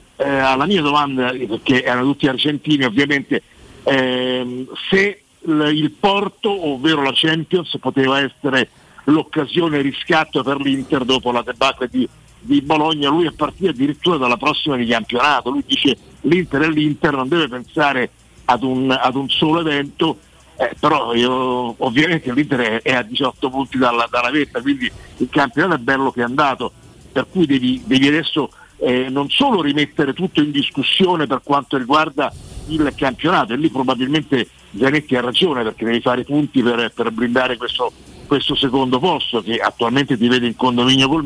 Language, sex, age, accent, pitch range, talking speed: Italian, male, 50-69, native, 125-150 Hz, 160 wpm